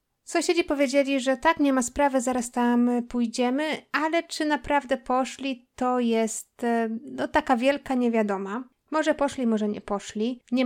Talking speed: 145 wpm